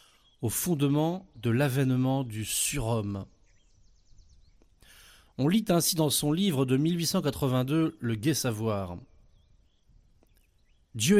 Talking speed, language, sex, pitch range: 95 wpm, French, male, 125-170 Hz